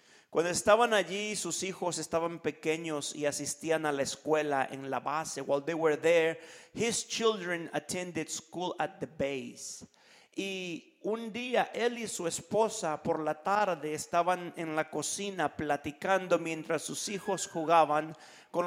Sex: male